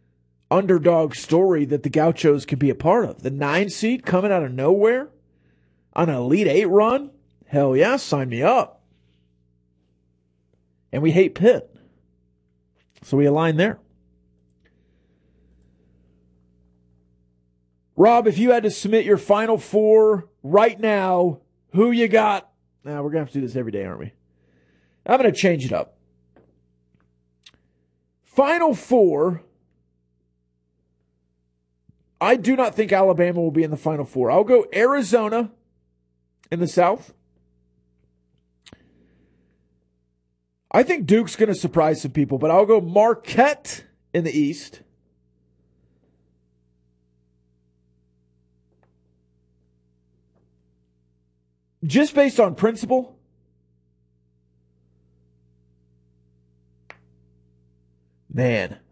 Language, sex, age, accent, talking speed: English, male, 40-59, American, 110 wpm